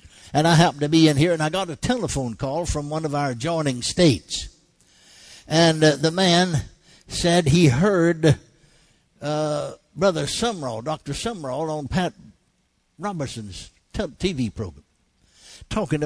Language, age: English, 60-79